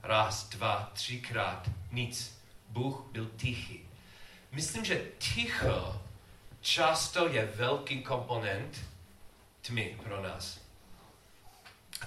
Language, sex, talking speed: Czech, male, 90 wpm